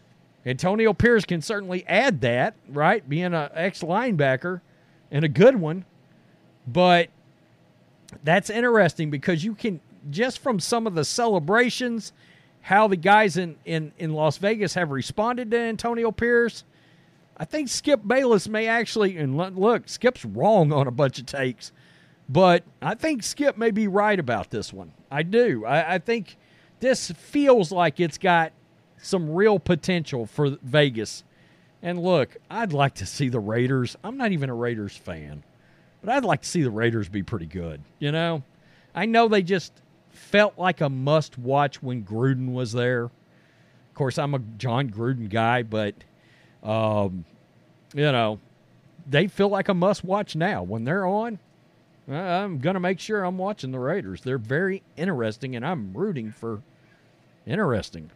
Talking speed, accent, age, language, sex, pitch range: 160 wpm, American, 40-59, English, male, 135-205 Hz